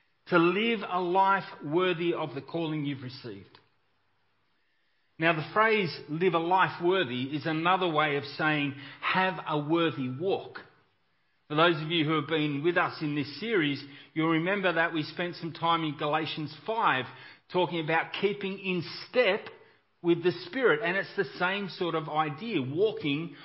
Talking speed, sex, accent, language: 165 wpm, male, Australian, English